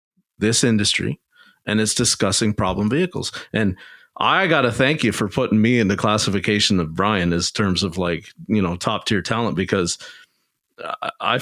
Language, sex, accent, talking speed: English, male, American, 170 wpm